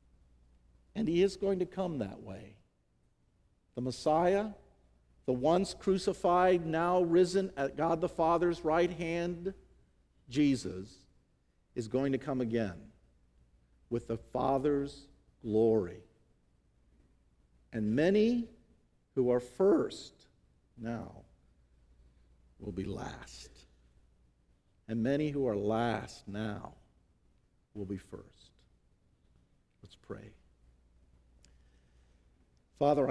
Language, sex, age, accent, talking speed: English, male, 50-69, American, 95 wpm